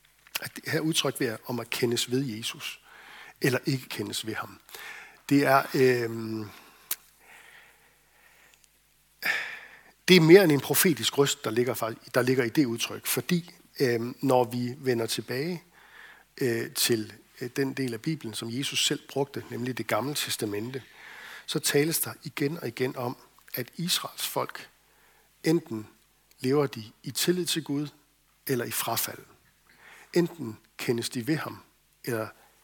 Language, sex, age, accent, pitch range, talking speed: Danish, male, 60-79, native, 120-155 Hz, 145 wpm